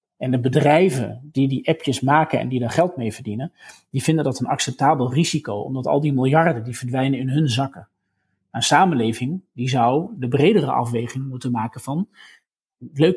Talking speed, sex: 180 wpm, male